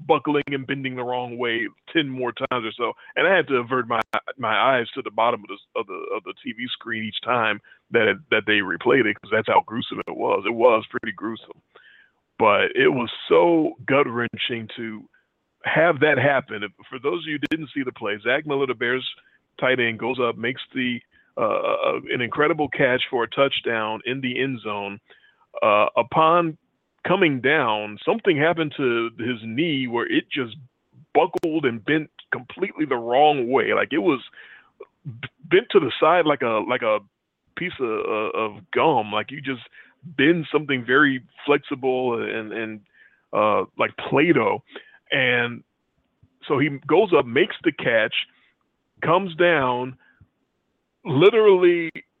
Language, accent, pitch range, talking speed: English, American, 120-165 Hz, 165 wpm